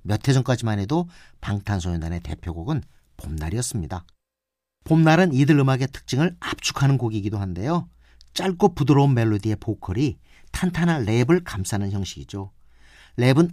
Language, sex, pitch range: Korean, male, 95-155 Hz